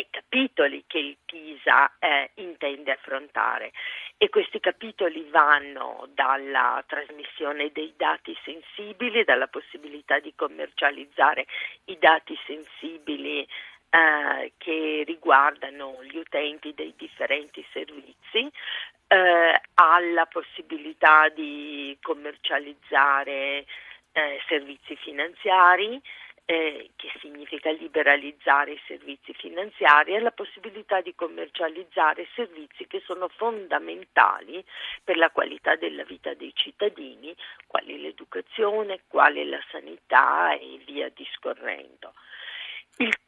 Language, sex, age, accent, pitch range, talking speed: Italian, female, 40-59, native, 145-215 Hz, 95 wpm